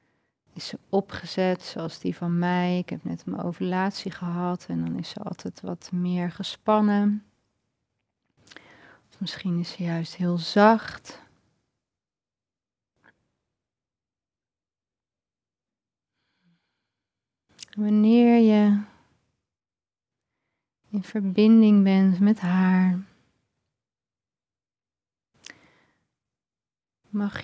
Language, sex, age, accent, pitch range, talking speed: Dutch, female, 30-49, Dutch, 170-210 Hz, 75 wpm